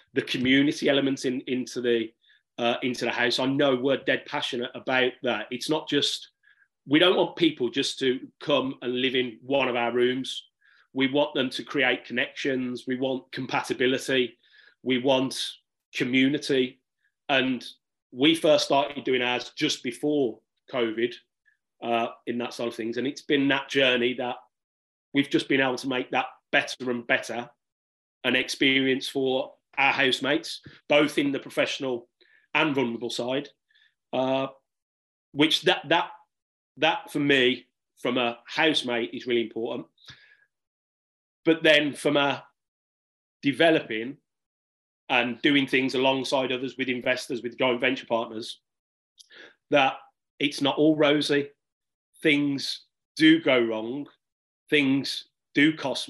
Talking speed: 140 wpm